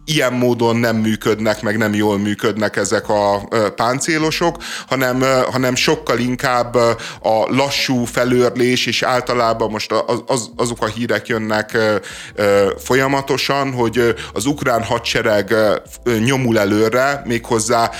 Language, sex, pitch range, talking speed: Hungarian, male, 105-125 Hz, 115 wpm